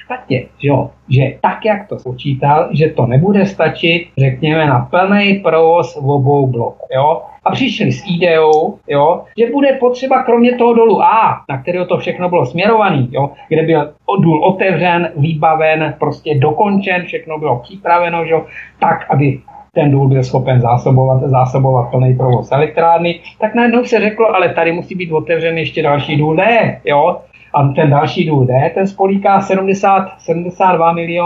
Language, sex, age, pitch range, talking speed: Czech, male, 50-69, 145-200 Hz, 145 wpm